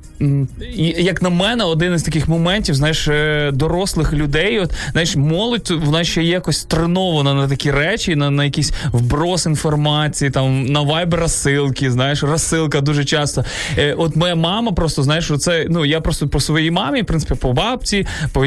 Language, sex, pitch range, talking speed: Ukrainian, male, 140-175 Hz, 165 wpm